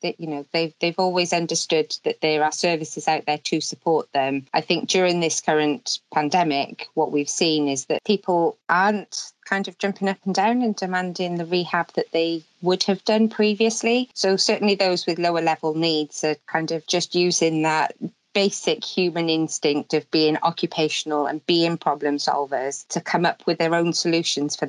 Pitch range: 155-185 Hz